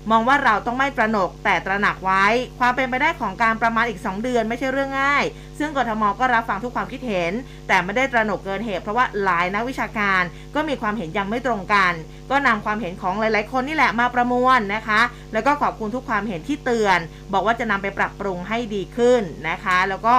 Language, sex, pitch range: Thai, female, 195-245 Hz